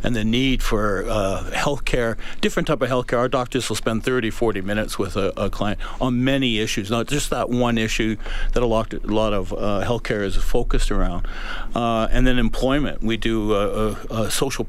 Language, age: English, 60-79